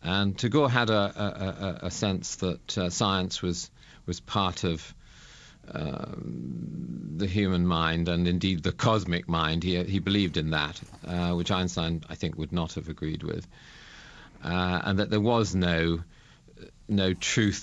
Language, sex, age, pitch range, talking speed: English, male, 50-69, 85-100 Hz, 160 wpm